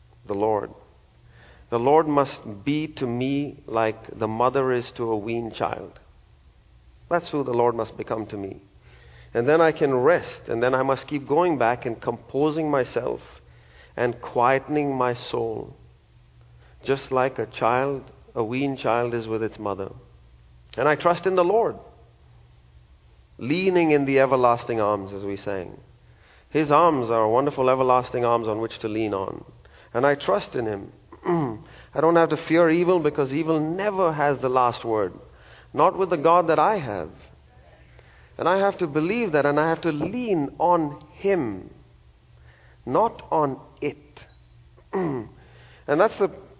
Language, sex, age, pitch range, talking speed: English, male, 40-59, 100-150 Hz, 160 wpm